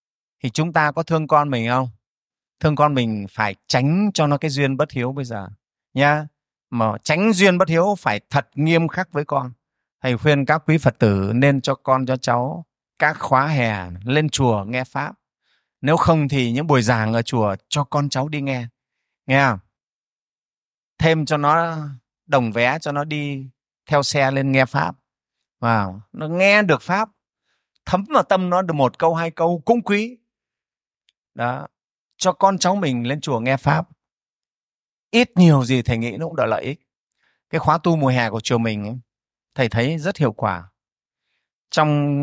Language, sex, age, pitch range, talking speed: Vietnamese, male, 30-49, 120-155 Hz, 185 wpm